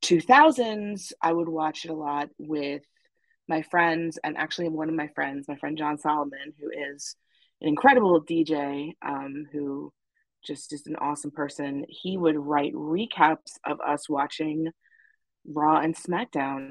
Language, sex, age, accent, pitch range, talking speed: English, female, 20-39, American, 145-165 Hz, 150 wpm